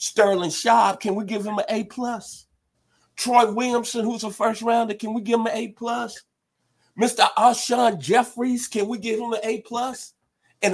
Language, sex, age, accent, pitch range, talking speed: English, male, 50-69, American, 135-215 Hz, 160 wpm